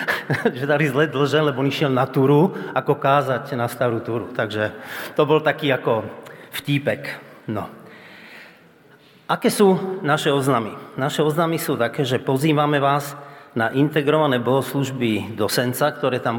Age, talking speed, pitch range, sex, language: 40-59, 140 wpm, 115-150 Hz, male, Slovak